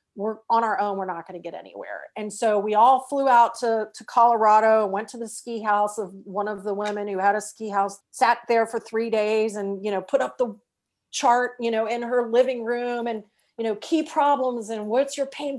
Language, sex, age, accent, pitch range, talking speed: English, female, 40-59, American, 205-245 Hz, 235 wpm